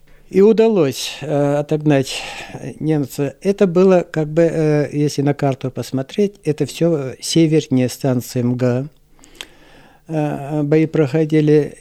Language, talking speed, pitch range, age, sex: Russian, 95 wpm, 130-160 Hz, 60-79, male